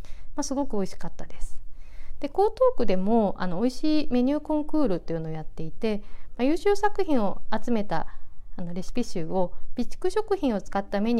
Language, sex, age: Japanese, female, 40-59